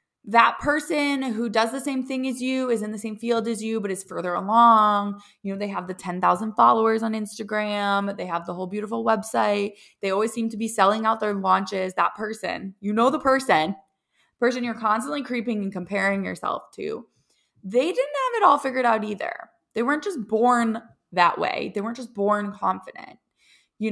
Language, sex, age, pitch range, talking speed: English, female, 20-39, 195-250 Hz, 195 wpm